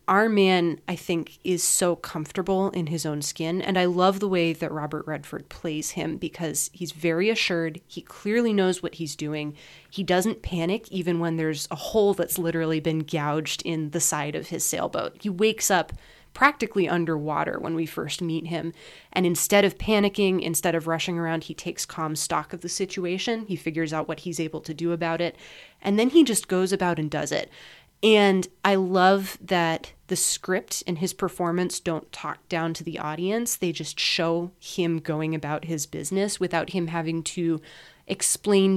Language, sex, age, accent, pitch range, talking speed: English, female, 20-39, American, 160-190 Hz, 185 wpm